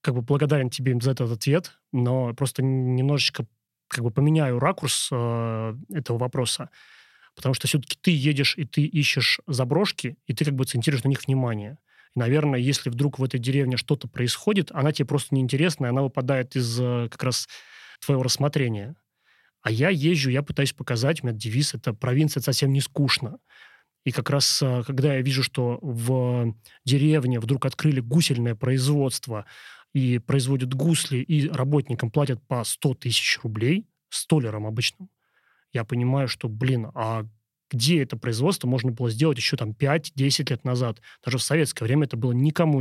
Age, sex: 30-49, male